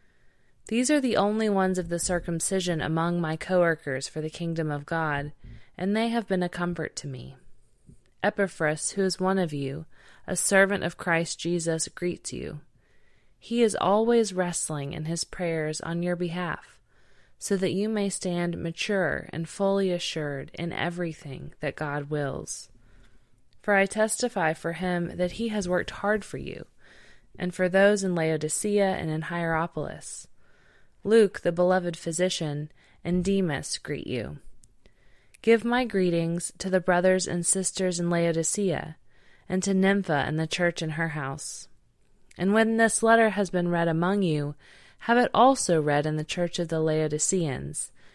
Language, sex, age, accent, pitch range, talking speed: English, female, 20-39, American, 155-190 Hz, 160 wpm